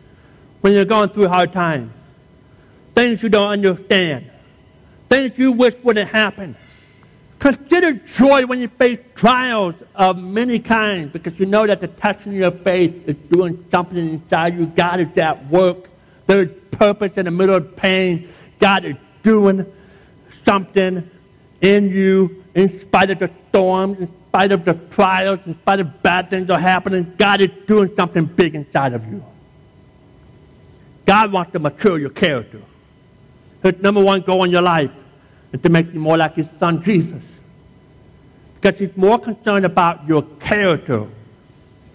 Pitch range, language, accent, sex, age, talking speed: 155-200 Hz, English, American, male, 60-79, 155 wpm